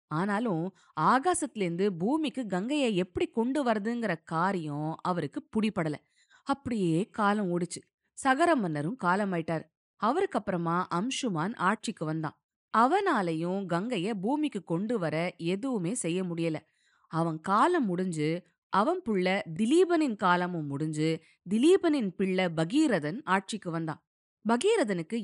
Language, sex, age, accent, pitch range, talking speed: Tamil, female, 20-39, native, 165-240 Hz, 100 wpm